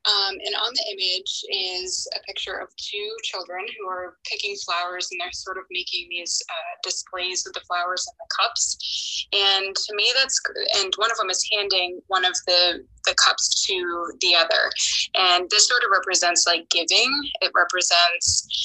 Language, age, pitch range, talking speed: English, 20-39, 175-215 Hz, 180 wpm